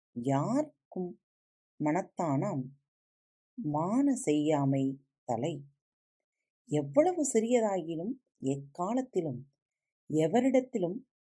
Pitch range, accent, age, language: 140-220 Hz, native, 30-49, Tamil